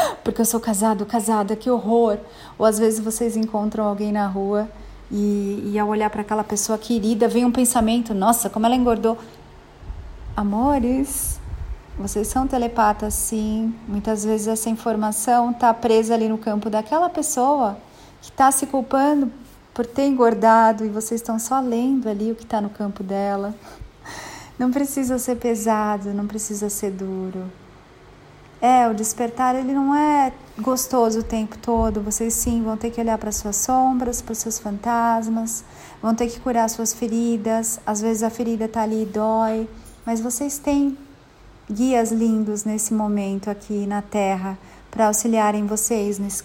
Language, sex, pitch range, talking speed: Portuguese, female, 215-235 Hz, 160 wpm